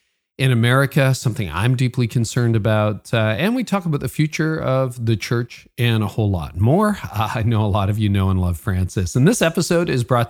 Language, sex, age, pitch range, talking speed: English, male, 40-59, 105-130 Hz, 215 wpm